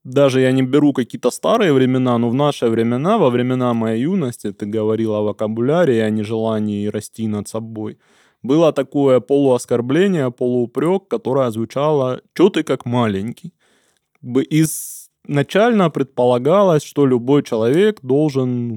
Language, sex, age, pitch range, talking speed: Russian, male, 20-39, 115-135 Hz, 130 wpm